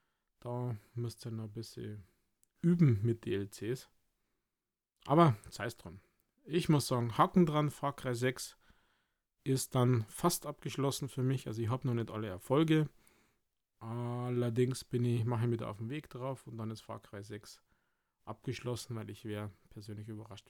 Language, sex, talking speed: German, male, 160 wpm